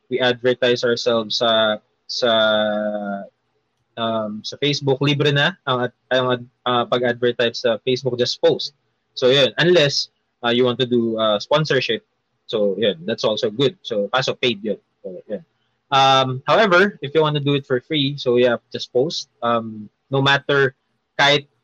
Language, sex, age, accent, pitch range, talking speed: English, male, 20-39, Filipino, 115-140 Hz, 160 wpm